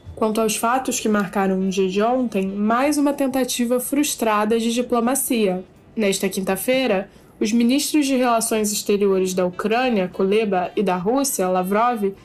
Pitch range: 205-255 Hz